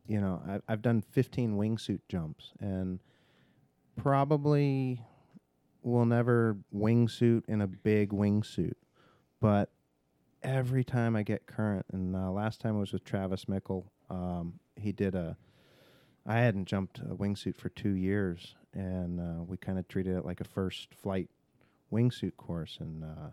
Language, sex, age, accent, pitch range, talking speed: English, male, 40-59, American, 95-110 Hz, 145 wpm